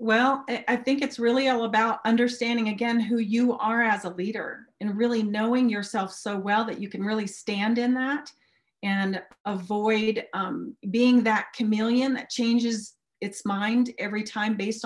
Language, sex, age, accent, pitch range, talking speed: English, female, 40-59, American, 195-235 Hz, 165 wpm